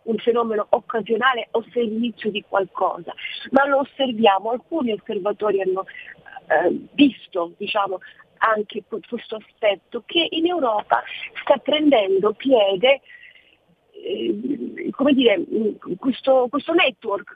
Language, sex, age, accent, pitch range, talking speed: Italian, female, 40-59, native, 205-265 Hz, 115 wpm